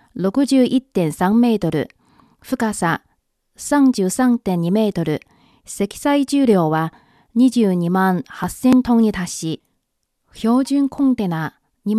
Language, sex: Japanese, female